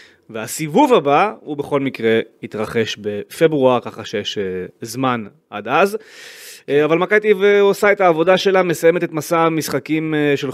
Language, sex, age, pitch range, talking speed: Hebrew, male, 30-49, 120-160 Hz, 130 wpm